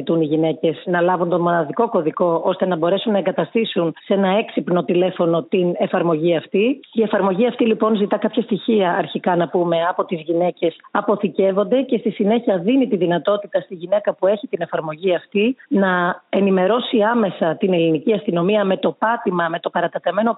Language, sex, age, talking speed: Greek, female, 30-49, 170 wpm